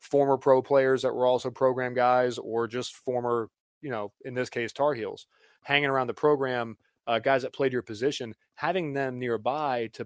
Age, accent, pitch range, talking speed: 20-39, American, 115-135 Hz, 190 wpm